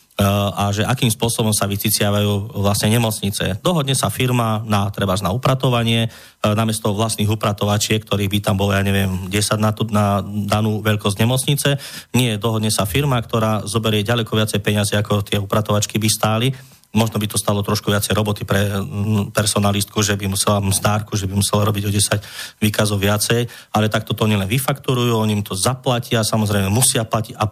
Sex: male